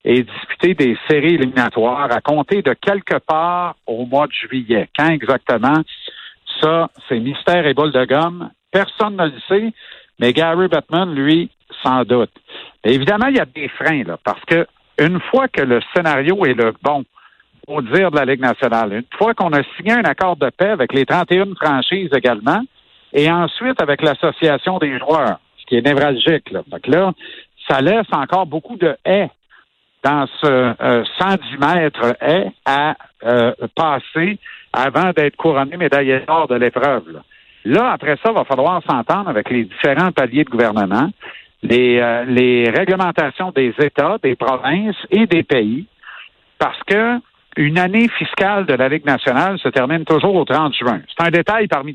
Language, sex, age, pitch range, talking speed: French, male, 60-79, 130-185 Hz, 170 wpm